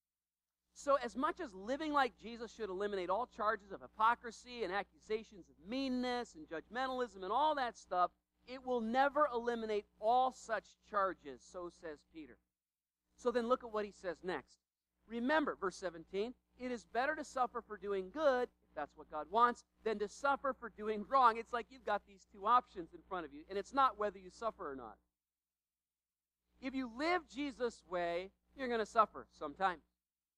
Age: 40-59